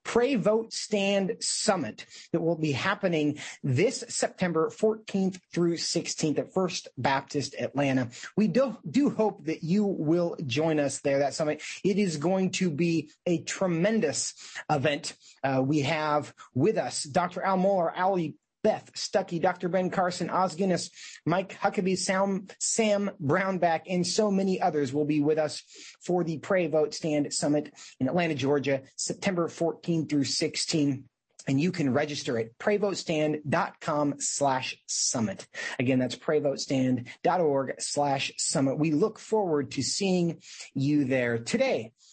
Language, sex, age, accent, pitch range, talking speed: English, male, 30-49, American, 150-200 Hz, 140 wpm